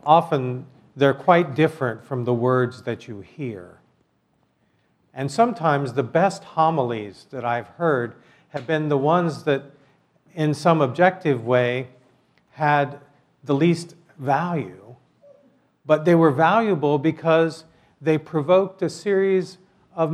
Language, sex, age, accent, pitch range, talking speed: English, male, 50-69, American, 120-155 Hz, 120 wpm